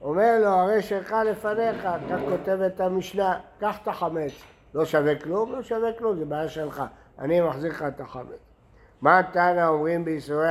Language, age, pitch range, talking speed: Hebrew, 60-79, 155-205 Hz, 170 wpm